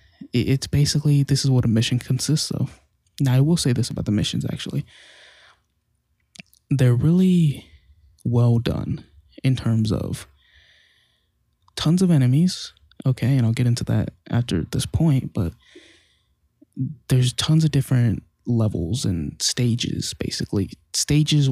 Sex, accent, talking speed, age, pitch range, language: male, American, 130 wpm, 20-39, 110-140 Hz, English